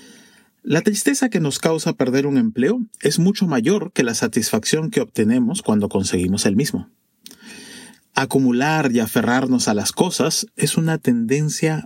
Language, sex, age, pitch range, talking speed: Spanish, male, 40-59, 140-230 Hz, 145 wpm